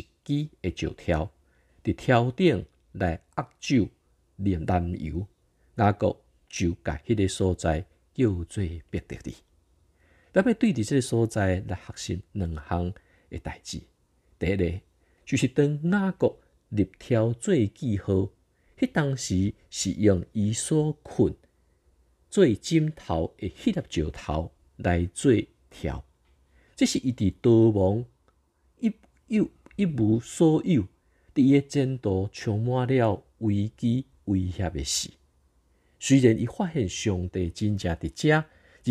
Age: 50-69